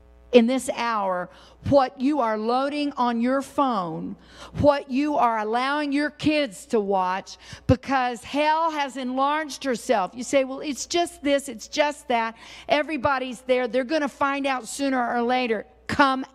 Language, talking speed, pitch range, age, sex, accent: English, 160 wpm, 245-300 Hz, 50-69, female, American